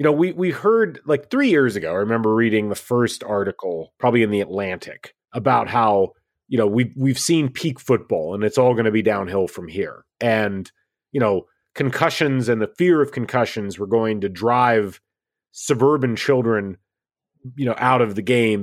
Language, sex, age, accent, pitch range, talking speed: English, male, 30-49, American, 105-130 Hz, 185 wpm